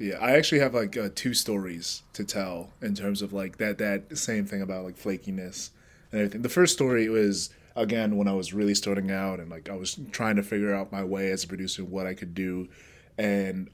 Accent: American